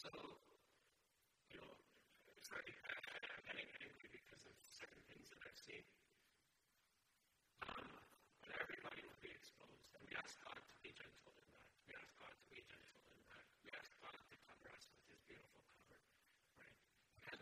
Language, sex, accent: English, female, American